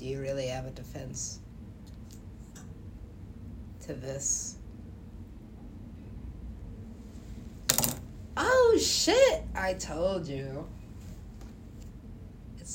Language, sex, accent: English, female, American